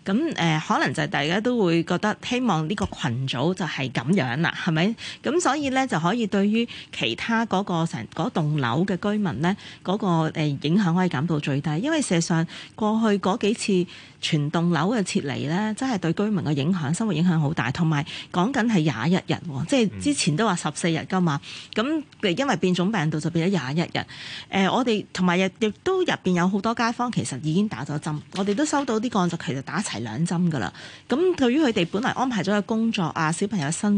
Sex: female